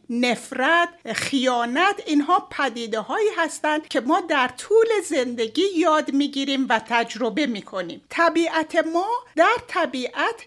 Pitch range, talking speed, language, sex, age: 245-360 Hz, 110 wpm, Persian, female, 60-79